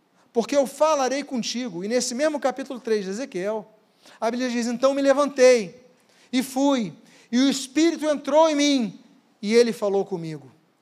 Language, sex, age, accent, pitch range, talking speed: Portuguese, male, 40-59, Brazilian, 215-265 Hz, 160 wpm